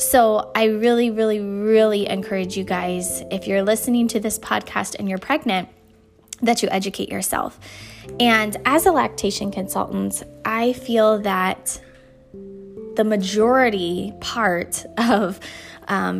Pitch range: 185-225 Hz